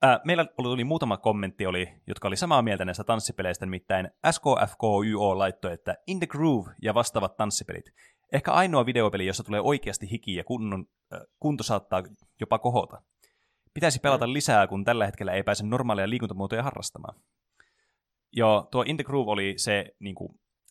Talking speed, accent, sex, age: 155 wpm, native, male, 20-39